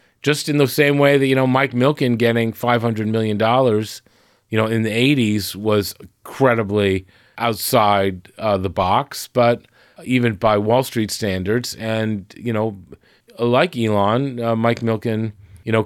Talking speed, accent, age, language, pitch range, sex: 150 wpm, American, 40-59, English, 100-120 Hz, male